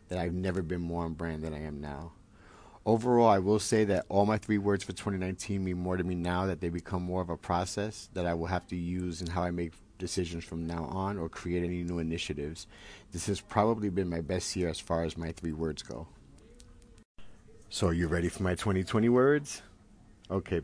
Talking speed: 220 wpm